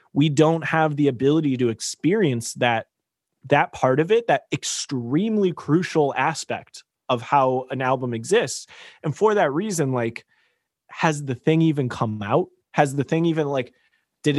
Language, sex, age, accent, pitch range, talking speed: English, male, 20-39, American, 120-150 Hz, 160 wpm